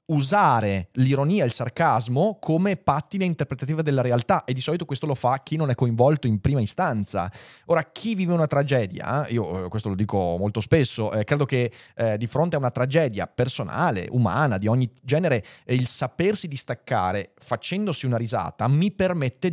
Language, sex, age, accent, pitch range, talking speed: Italian, male, 30-49, native, 110-150 Hz, 170 wpm